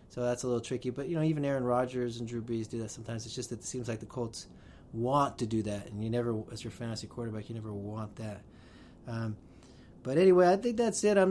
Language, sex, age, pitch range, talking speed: English, male, 30-49, 120-140 Hz, 255 wpm